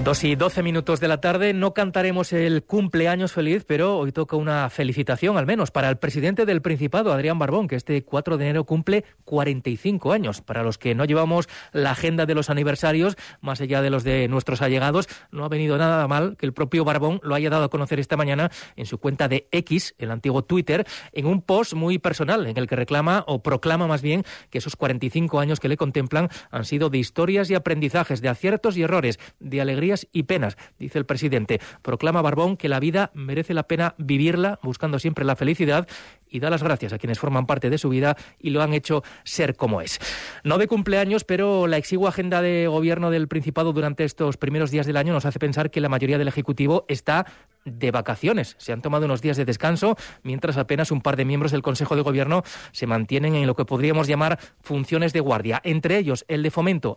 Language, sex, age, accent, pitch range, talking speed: Spanish, male, 30-49, Spanish, 140-170 Hz, 215 wpm